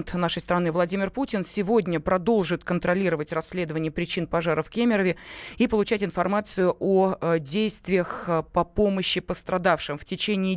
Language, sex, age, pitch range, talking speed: Russian, female, 20-39, 170-205 Hz, 125 wpm